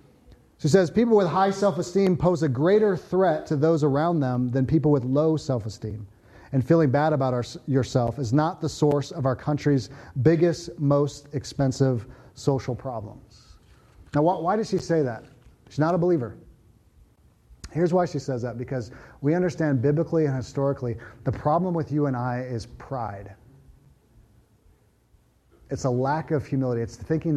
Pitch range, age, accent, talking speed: 130-175 Hz, 30-49, American, 160 wpm